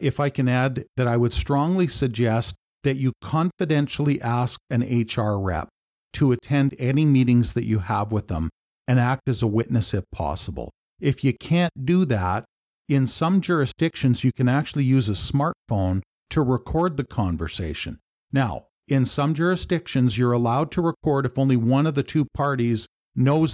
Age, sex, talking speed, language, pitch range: 50-69, male, 170 wpm, English, 110-145 Hz